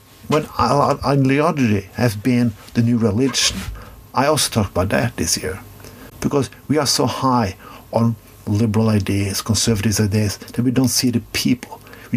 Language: English